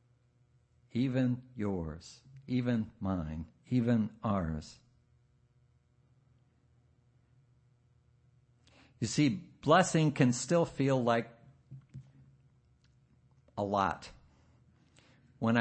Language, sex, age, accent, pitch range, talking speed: English, male, 60-79, American, 120-155 Hz, 60 wpm